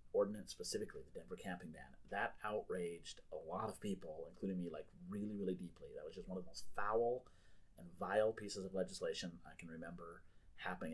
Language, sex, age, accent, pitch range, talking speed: English, male, 30-49, American, 95-130 Hz, 190 wpm